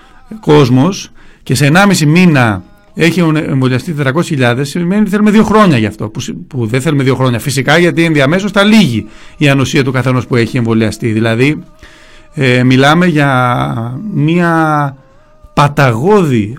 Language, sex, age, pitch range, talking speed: Greek, male, 40-59, 120-165 Hz, 130 wpm